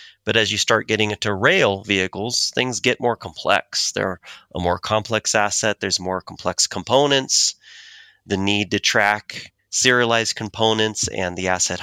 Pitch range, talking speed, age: 95-125 Hz, 155 wpm, 30-49